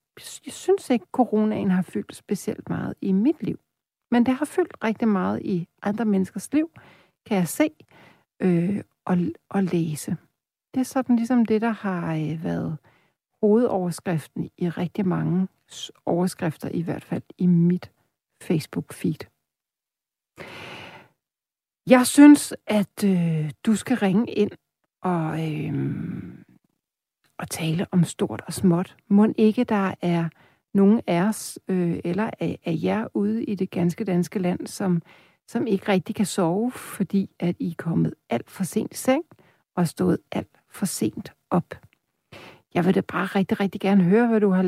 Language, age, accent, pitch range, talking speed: Danish, 60-79, native, 175-220 Hz, 150 wpm